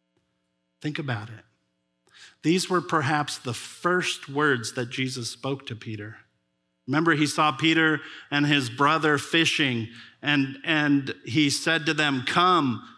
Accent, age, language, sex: American, 50-69, English, male